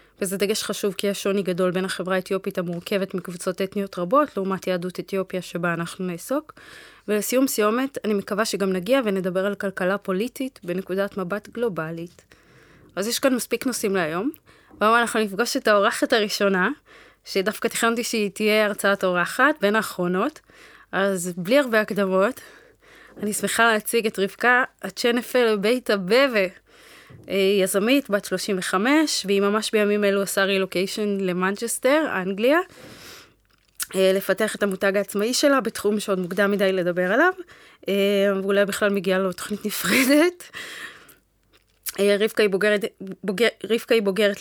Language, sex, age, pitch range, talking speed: Hebrew, female, 20-39, 190-230 Hz, 135 wpm